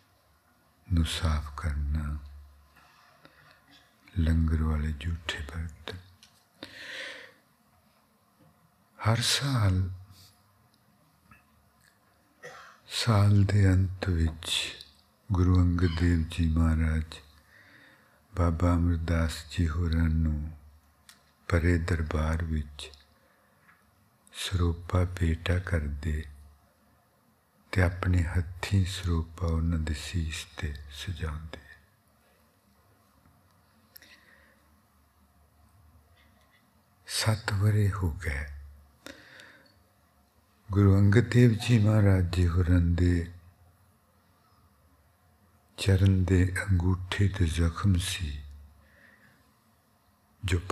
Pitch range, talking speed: 80-100 Hz, 45 wpm